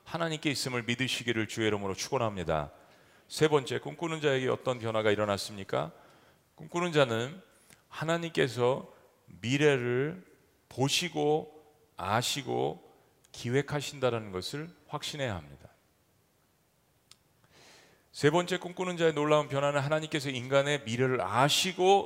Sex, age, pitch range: male, 40-59, 115-150 Hz